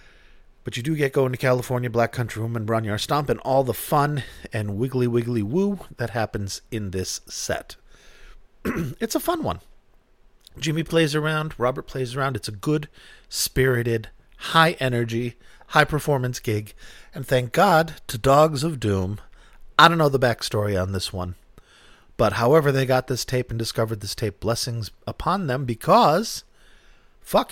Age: 40-59